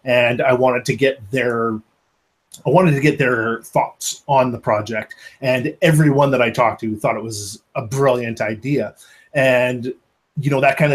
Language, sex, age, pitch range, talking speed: English, male, 30-49, 115-140 Hz, 175 wpm